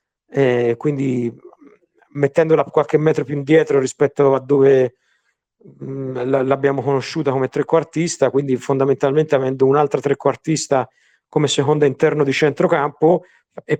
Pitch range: 135-155 Hz